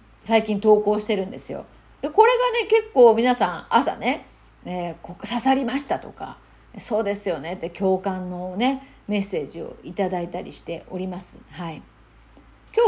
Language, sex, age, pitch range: Japanese, female, 40-59, 190-275 Hz